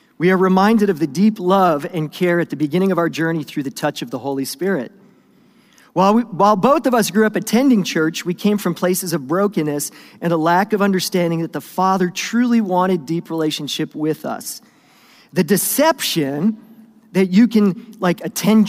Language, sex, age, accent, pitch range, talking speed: English, male, 40-59, American, 165-215 Hz, 185 wpm